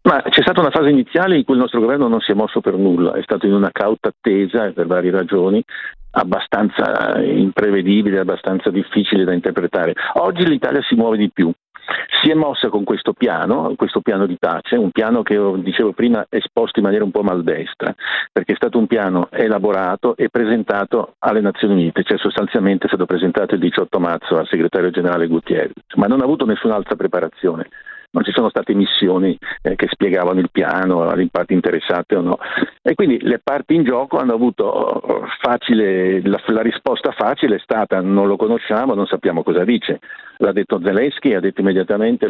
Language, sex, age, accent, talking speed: Italian, male, 50-69, native, 190 wpm